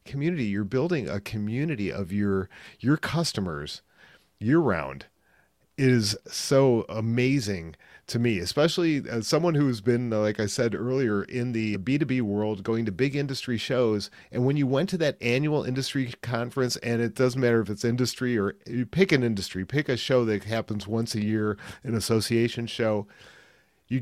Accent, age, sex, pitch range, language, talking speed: American, 40-59, male, 105-135 Hz, English, 170 wpm